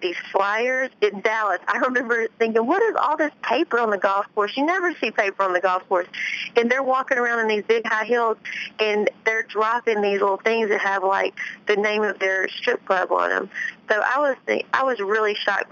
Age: 50-69